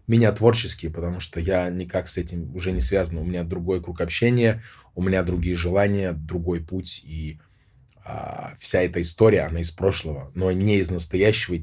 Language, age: Russian, 20-39